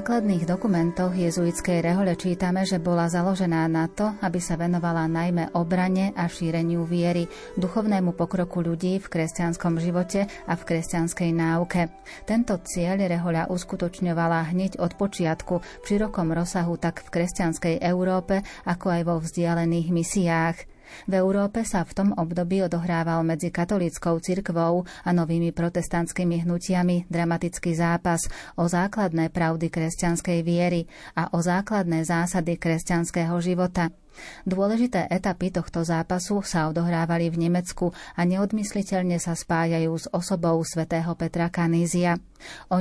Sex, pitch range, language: female, 170-185 Hz, Slovak